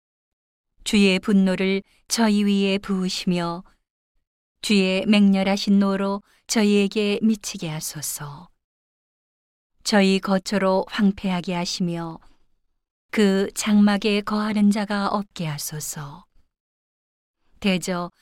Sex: female